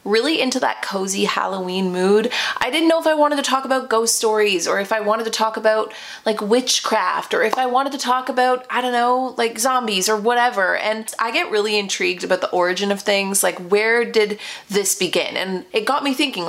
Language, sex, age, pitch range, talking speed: English, female, 30-49, 195-240 Hz, 220 wpm